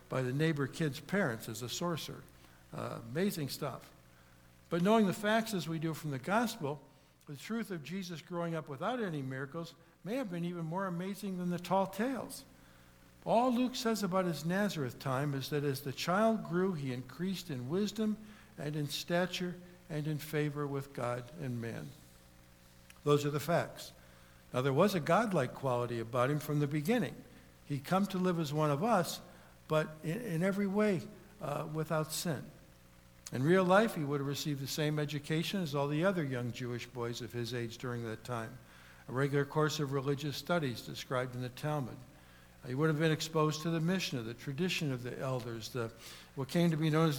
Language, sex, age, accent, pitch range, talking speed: English, male, 60-79, American, 125-170 Hz, 190 wpm